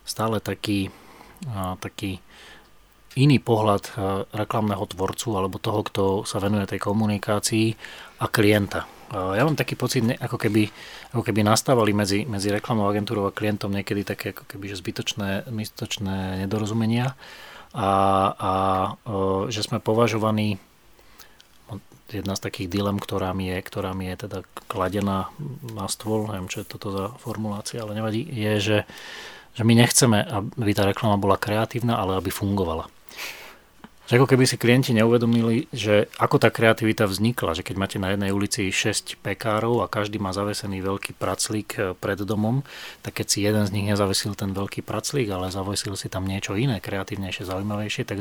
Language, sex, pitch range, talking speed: Slovak, male, 100-115 Hz, 150 wpm